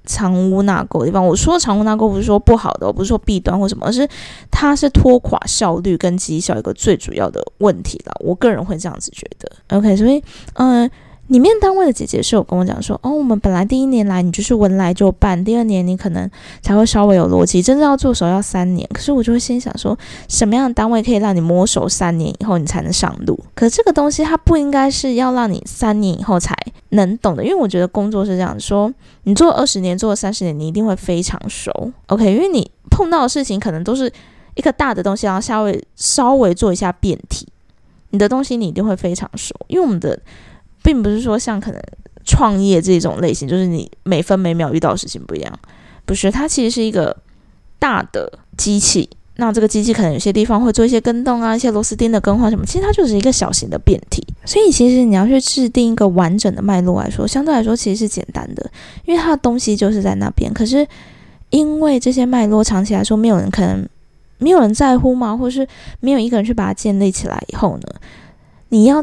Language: Chinese